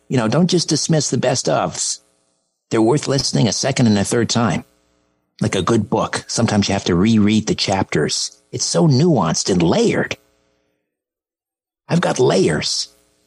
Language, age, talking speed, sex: English, 50-69, 165 wpm, male